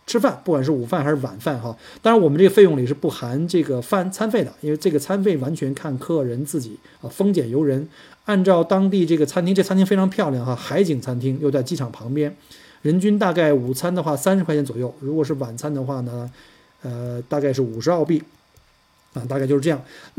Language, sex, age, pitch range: Chinese, male, 50-69, 130-175 Hz